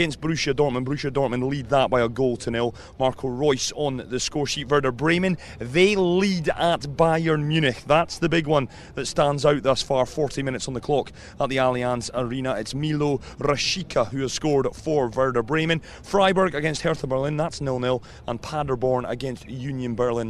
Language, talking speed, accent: English, 185 wpm, British